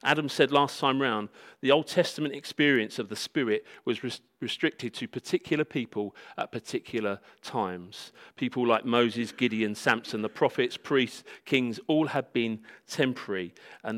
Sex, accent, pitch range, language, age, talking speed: male, British, 115-155 Hz, English, 40-59, 150 wpm